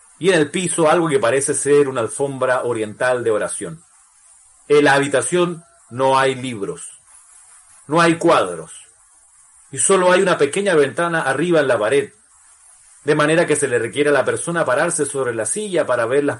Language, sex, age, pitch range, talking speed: Spanish, male, 40-59, 135-170 Hz, 175 wpm